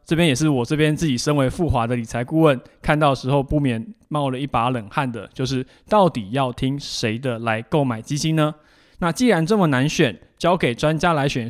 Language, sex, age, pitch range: Chinese, male, 20-39, 130-165 Hz